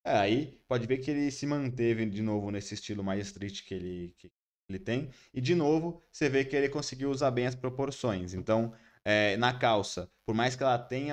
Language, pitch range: Portuguese, 110-135 Hz